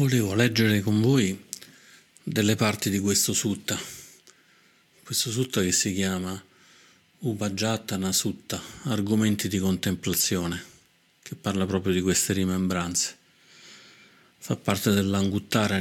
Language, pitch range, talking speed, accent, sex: Italian, 95-105 Hz, 105 wpm, native, male